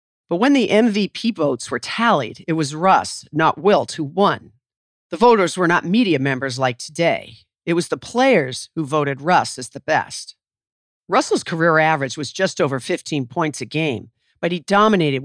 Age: 50-69